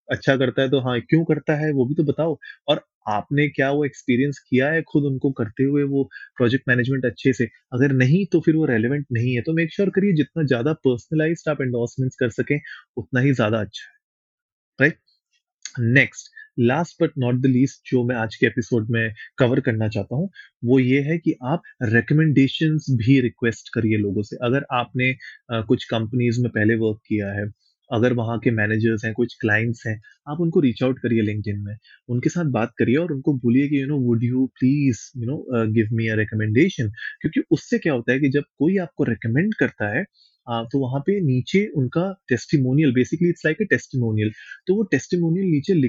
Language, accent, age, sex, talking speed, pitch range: Hindi, native, 20-39, male, 185 wpm, 115-150 Hz